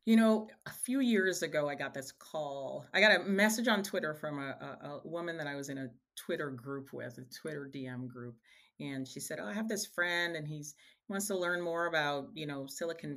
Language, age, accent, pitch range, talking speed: English, 30-49, American, 135-160 Hz, 235 wpm